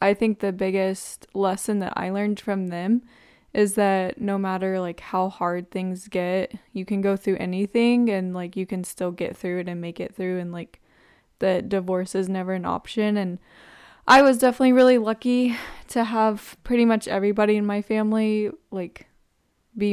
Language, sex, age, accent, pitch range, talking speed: English, female, 10-29, American, 185-215 Hz, 180 wpm